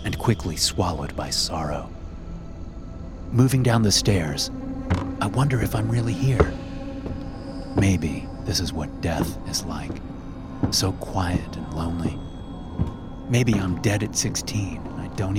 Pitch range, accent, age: 85-105 Hz, American, 30-49